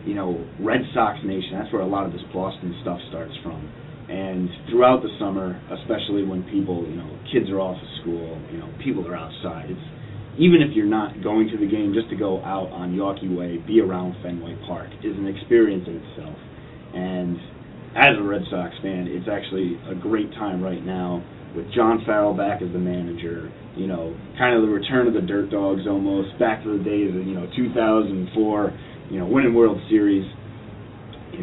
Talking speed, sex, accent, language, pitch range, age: 195 wpm, male, American, English, 90-110 Hz, 30-49